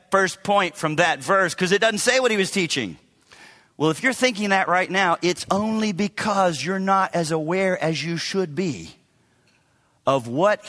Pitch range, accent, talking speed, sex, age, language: 155-205 Hz, American, 185 wpm, male, 40-59, English